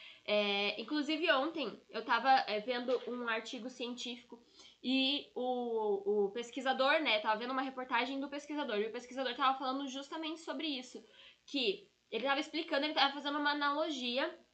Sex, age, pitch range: female, 10-29, 235-290 Hz